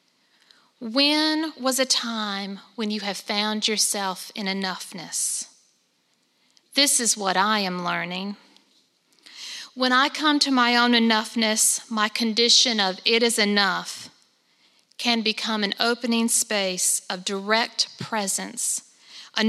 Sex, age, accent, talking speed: female, 50-69, American, 120 wpm